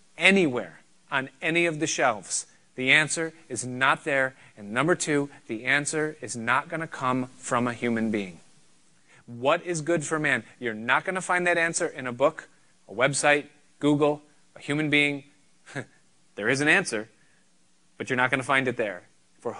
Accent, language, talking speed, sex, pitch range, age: American, English, 180 wpm, male, 120-150 Hz, 30-49